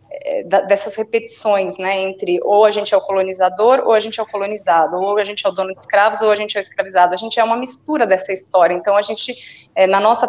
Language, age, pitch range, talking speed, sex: Portuguese, 30-49, 195-245 Hz, 245 wpm, female